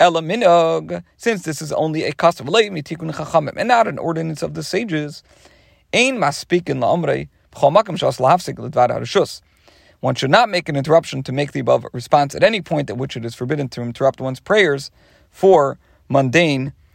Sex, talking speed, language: male, 135 wpm, English